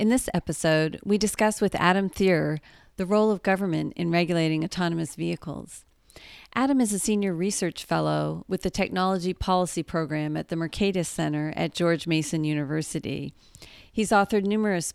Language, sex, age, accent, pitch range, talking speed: English, female, 40-59, American, 155-195 Hz, 155 wpm